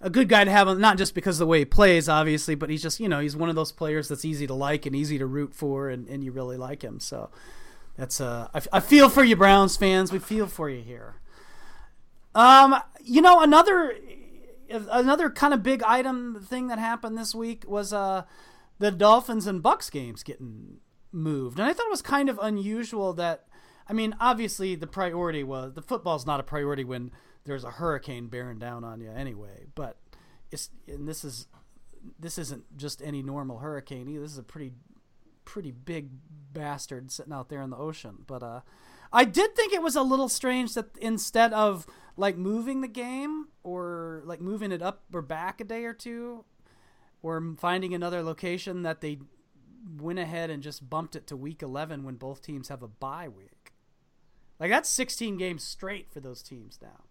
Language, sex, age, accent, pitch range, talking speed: English, male, 30-49, American, 140-220 Hz, 200 wpm